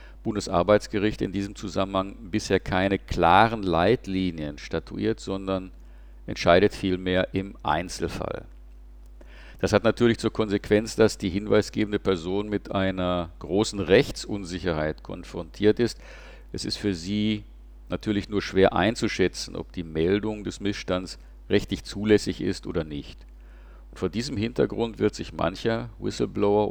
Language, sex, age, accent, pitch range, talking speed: German, male, 50-69, German, 75-105 Hz, 120 wpm